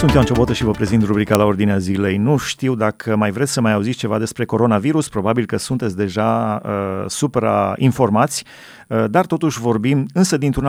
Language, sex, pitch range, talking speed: Romanian, male, 110-145 Hz, 185 wpm